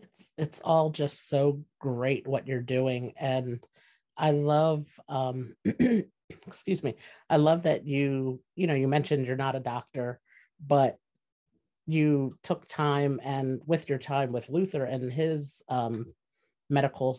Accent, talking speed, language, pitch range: American, 145 wpm, English, 125-145 Hz